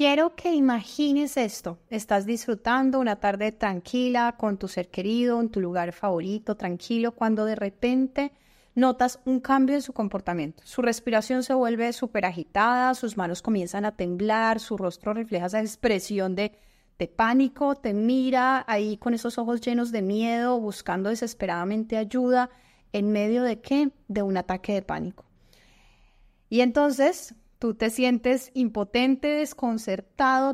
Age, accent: 30-49, Colombian